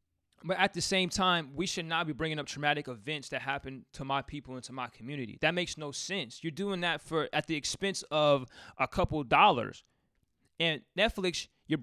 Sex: male